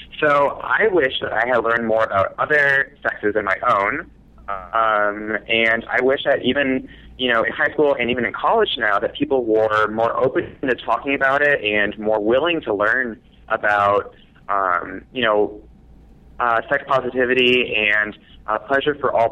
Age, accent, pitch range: 20-39, American, 110-135 Hz